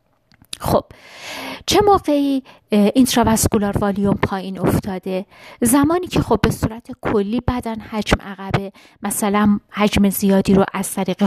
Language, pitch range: Persian, 190-245 Hz